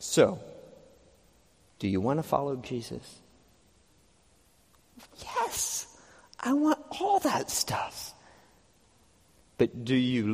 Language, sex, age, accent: English, male, 40-59, American